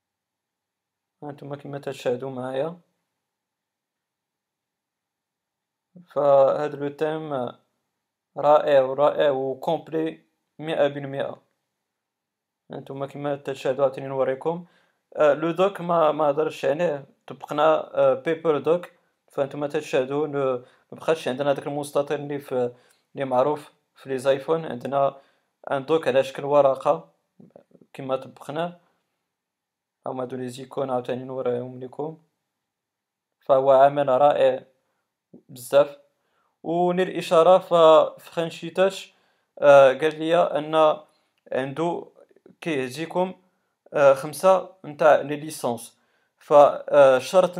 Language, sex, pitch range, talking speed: Arabic, male, 135-170 Hz, 95 wpm